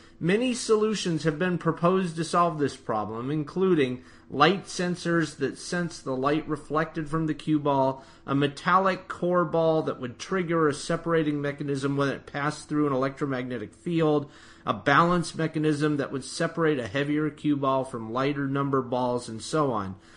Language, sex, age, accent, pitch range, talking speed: English, male, 40-59, American, 130-175 Hz, 165 wpm